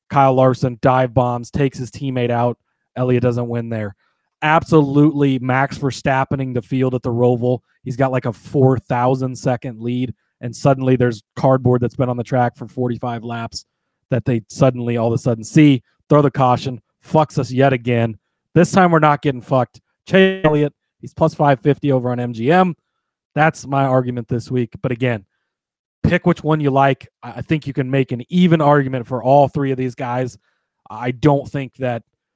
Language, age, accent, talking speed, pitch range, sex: English, 30-49, American, 185 wpm, 125-145 Hz, male